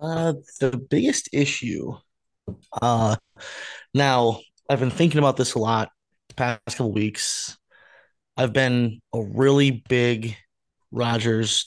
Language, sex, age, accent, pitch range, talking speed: English, male, 20-39, American, 115-130 Hz, 120 wpm